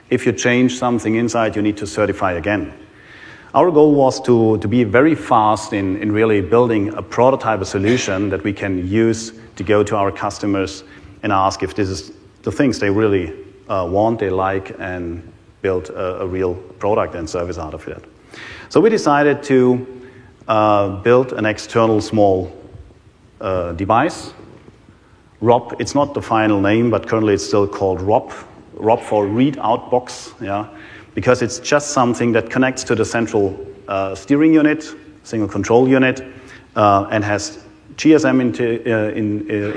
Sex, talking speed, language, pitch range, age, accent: male, 165 wpm, English, 100-120 Hz, 40-59, German